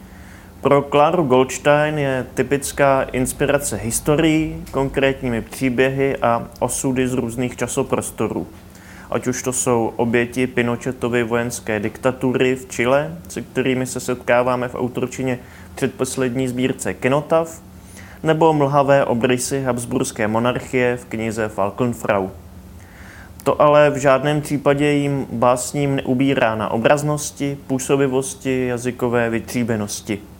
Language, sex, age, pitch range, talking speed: Czech, male, 20-39, 115-135 Hz, 105 wpm